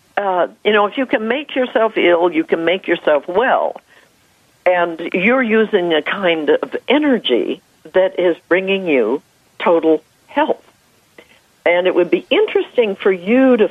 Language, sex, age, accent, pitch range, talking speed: English, female, 60-79, American, 160-255 Hz, 155 wpm